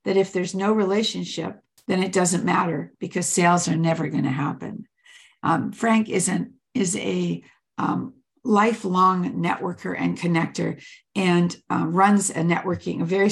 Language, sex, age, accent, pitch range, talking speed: English, female, 60-79, American, 170-210 Hz, 155 wpm